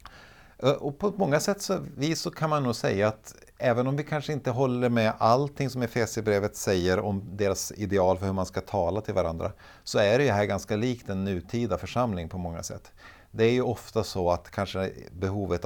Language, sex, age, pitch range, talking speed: Swedish, male, 50-69, 85-110 Hz, 205 wpm